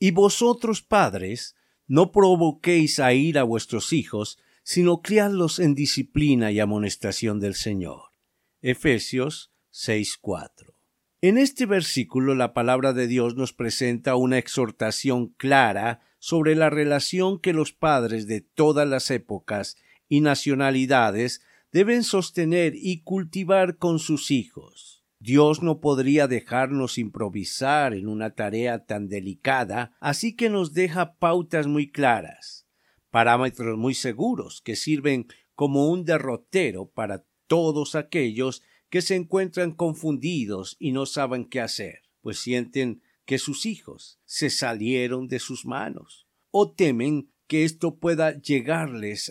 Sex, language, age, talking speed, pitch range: male, Spanish, 50-69, 125 wpm, 120-165 Hz